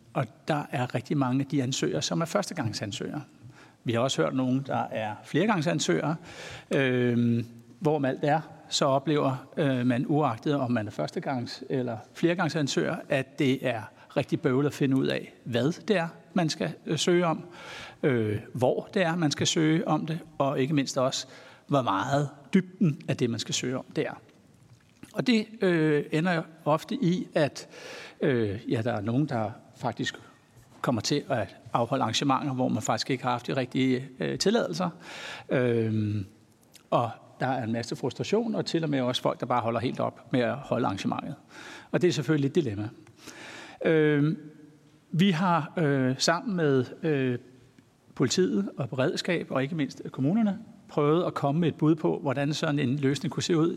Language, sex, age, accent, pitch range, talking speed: Danish, male, 60-79, native, 125-160 Hz, 175 wpm